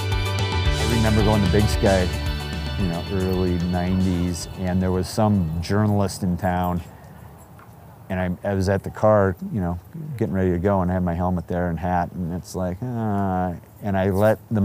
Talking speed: 185 wpm